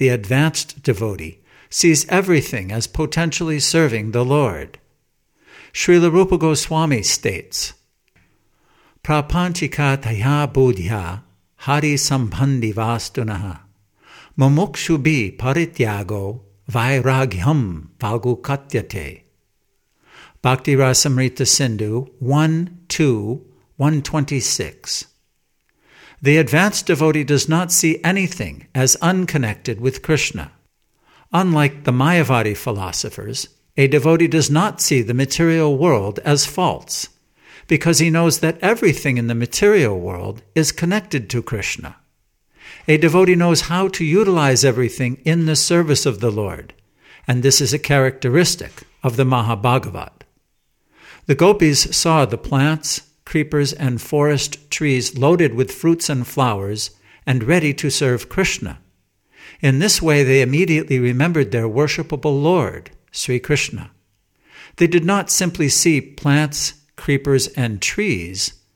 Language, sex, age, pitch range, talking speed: English, male, 60-79, 120-160 Hz, 115 wpm